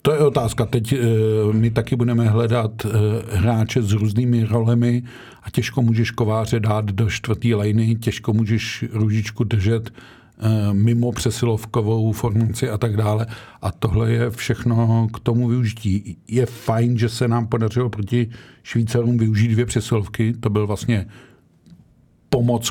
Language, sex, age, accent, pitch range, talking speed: Czech, male, 50-69, native, 110-120 Hz, 135 wpm